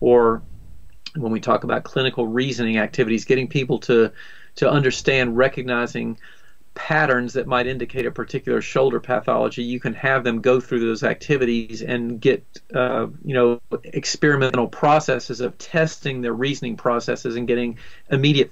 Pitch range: 120-135 Hz